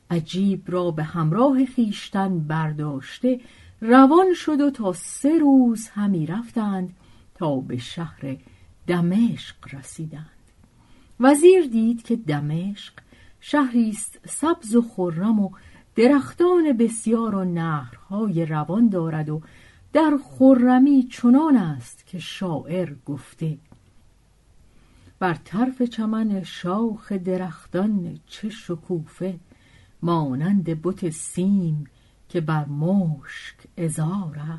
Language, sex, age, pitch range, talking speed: Persian, female, 50-69, 155-225 Hz, 95 wpm